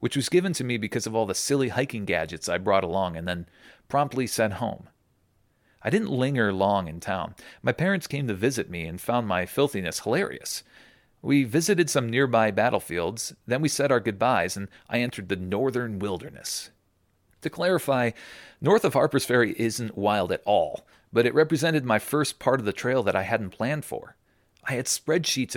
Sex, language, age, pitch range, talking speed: male, English, 40-59, 105-140 Hz, 190 wpm